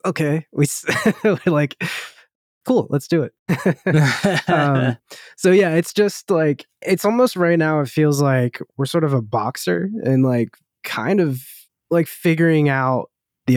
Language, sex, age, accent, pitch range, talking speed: English, male, 20-39, American, 115-150 Hz, 150 wpm